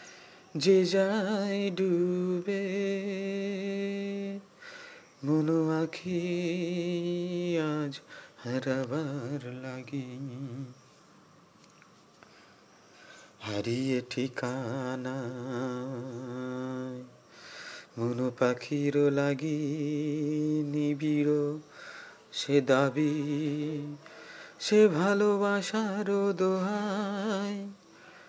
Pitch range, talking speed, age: 130-170 Hz, 40 wpm, 30-49